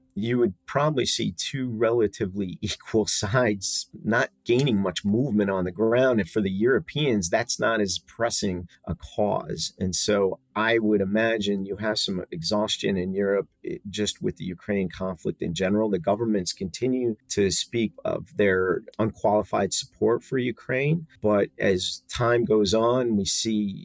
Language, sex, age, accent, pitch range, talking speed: English, male, 40-59, American, 95-110 Hz, 155 wpm